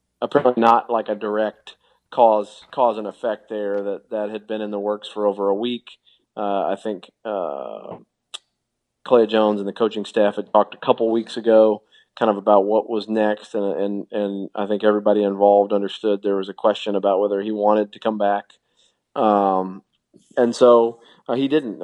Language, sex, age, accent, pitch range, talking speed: English, male, 40-59, American, 100-115 Hz, 185 wpm